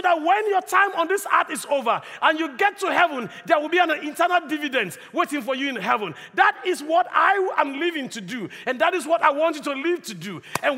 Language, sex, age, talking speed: English, male, 50-69, 250 wpm